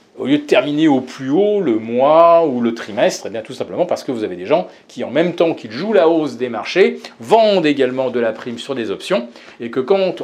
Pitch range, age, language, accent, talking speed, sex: 125-195 Hz, 40-59, French, French, 250 wpm, male